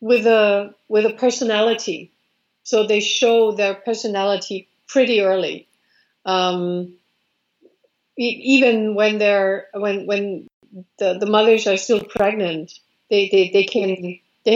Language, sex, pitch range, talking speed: English, female, 190-225 Hz, 125 wpm